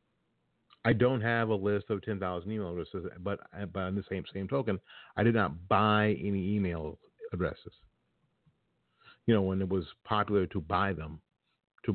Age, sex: 50-69, male